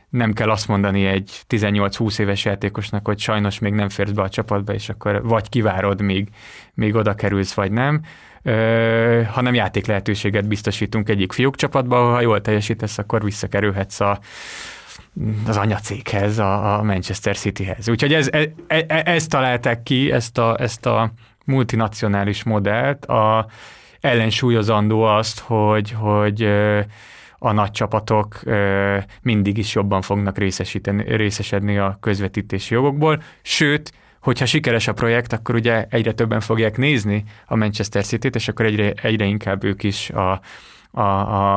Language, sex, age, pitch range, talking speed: Hungarian, male, 20-39, 100-115 Hz, 140 wpm